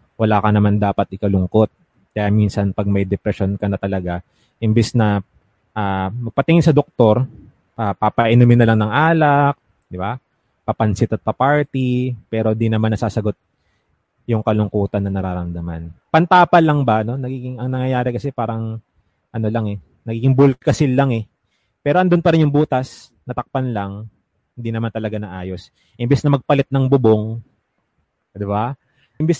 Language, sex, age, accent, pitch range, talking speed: Filipino, male, 20-39, native, 100-125 Hz, 150 wpm